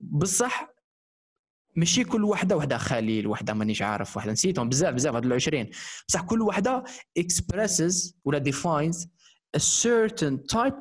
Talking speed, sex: 135 wpm, male